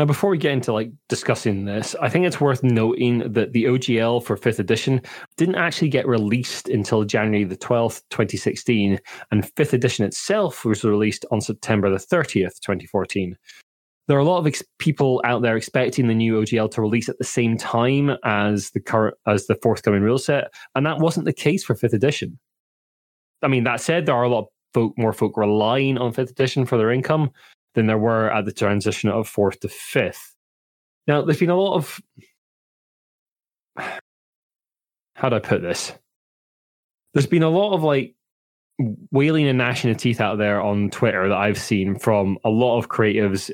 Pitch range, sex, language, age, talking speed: 105-130 Hz, male, English, 20-39, 190 wpm